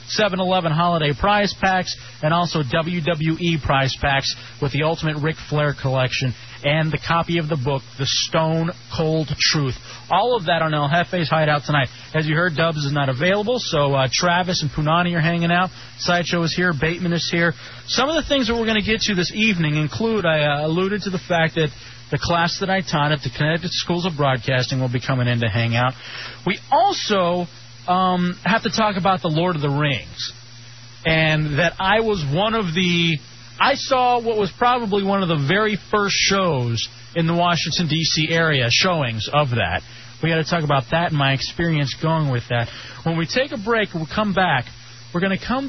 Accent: American